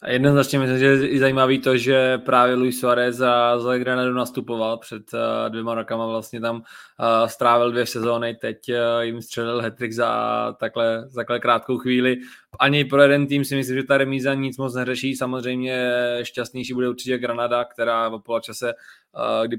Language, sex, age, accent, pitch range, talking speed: Czech, male, 20-39, native, 120-130 Hz, 160 wpm